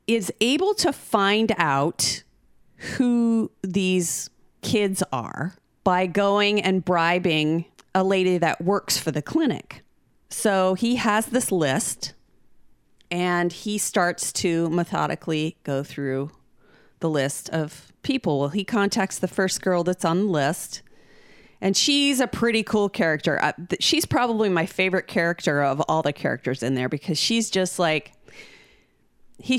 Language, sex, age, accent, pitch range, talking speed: English, female, 40-59, American, 160-220 Hz, 140 wpm